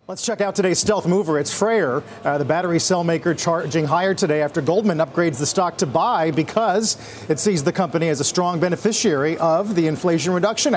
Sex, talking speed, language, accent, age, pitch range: male, 200 wpm, English, American, 40-59, 155-195 Hz